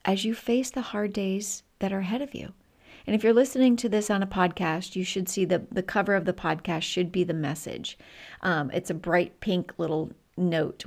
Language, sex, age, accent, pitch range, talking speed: English, female, 40-59, American, 175-210 Hz, 220 wpm